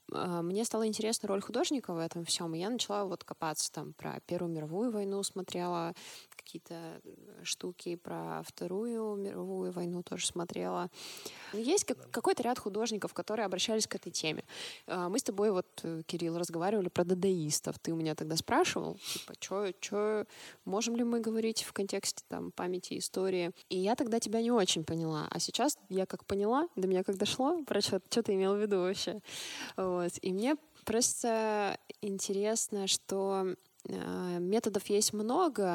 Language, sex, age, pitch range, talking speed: Russian, female, 20-39, 175-225 Hz, 155 wpm